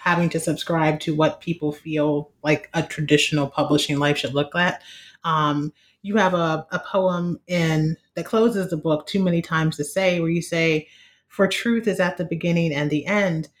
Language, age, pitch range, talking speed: English, 30-49, 150-180 Hz, 190 wpm